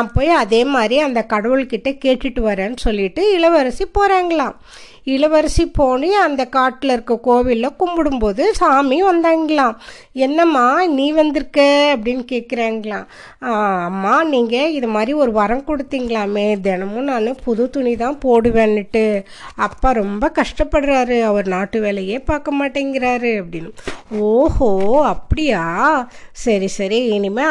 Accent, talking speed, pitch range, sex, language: native, 110 wpm, 220-295 Hz, female, Tamil